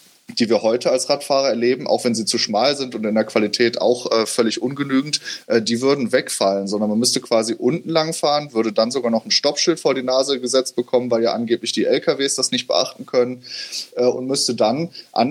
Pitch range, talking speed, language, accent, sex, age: 115-125 Hz, 220 wpm, German, German, male, 20-39